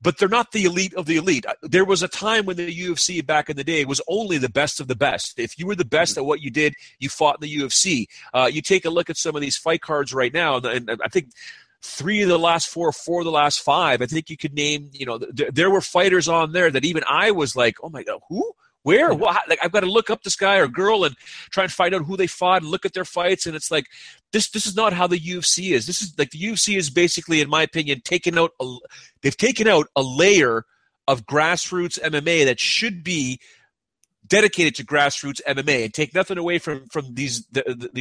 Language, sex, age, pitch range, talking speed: English, male, 30-49, 145-185 Hz, 250 wpm